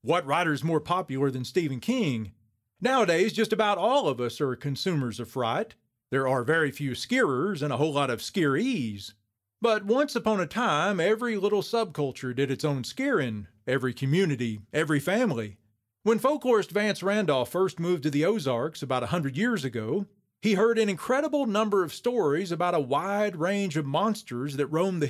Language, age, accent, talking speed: English, 40-59, American, 175 wpm